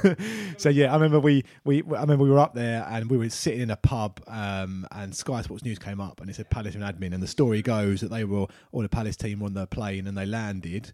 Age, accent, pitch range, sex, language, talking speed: 30-49, British, 95-120 Hz, male, English, 270 wpm